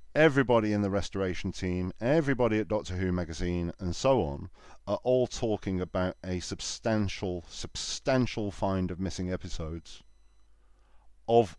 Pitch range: 85-100 Hz